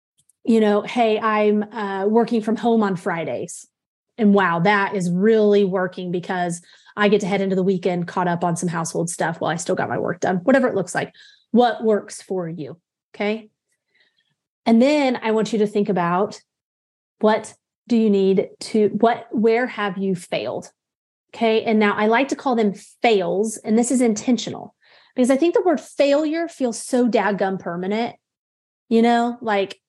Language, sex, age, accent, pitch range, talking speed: English, female, 30-49, American, 200-250 Hz, 180 wpm